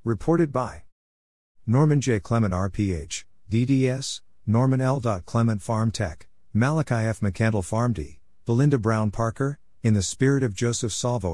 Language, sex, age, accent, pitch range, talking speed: English, male, 50-69, American, 90-125 Hz, 140 wpm